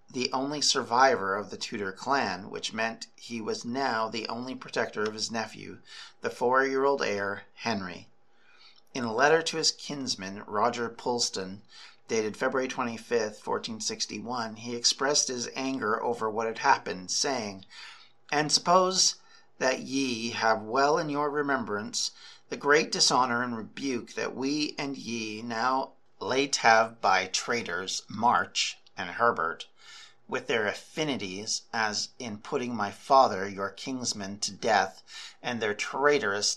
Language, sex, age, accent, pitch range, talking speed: English, male, 50-69, American, 110-135 Hz, 140 wpm